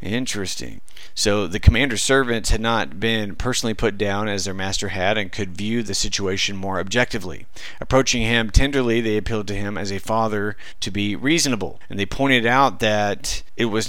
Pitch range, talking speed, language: 100-120 Hz, 180 wpm, English